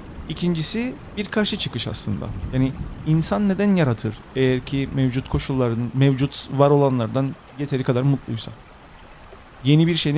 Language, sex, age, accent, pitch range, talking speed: English, male, 40-59, Turkish, 125-160 Hz, 130 wpm